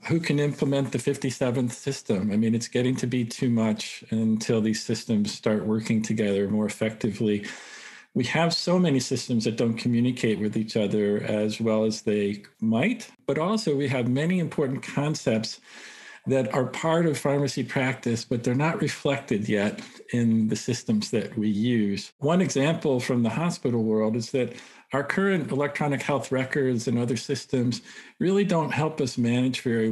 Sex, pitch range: male, 110-140 Hz